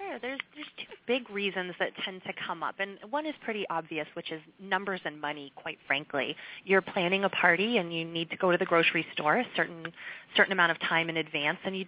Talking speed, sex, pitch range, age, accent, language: 225 wpm, female, 175-225 Hz, 30-49, American, English